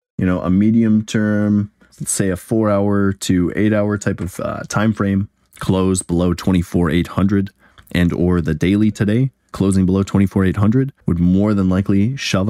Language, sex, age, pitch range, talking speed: English, male, 20-39, 85-100 Hz, 160 wpm